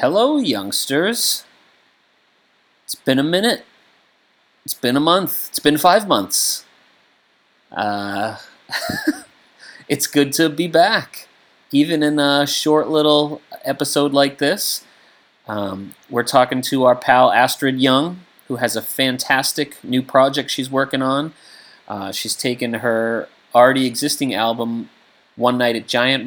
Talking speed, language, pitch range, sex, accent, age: 130 wpm, English, 110-135 Hz, male, American, 30-49